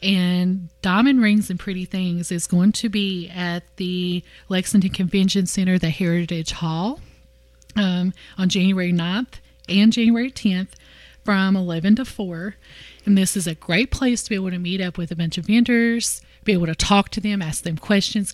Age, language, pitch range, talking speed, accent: 30-49, English, 175-210 Hz, 180 wpm, American